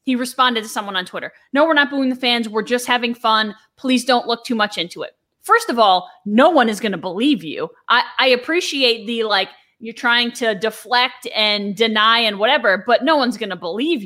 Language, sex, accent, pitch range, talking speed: English, female, American, 230-290 Hz, 220 wpm